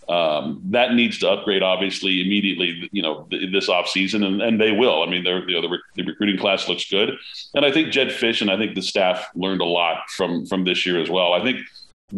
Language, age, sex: English, 40-59, male